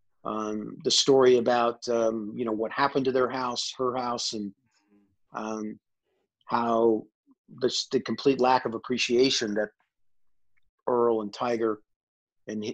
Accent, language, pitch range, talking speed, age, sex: American, English, 110-130 Hz, 130 wpm, 40-59, male